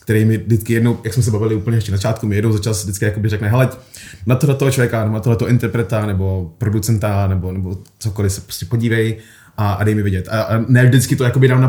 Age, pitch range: 20-39, 110-135 Hz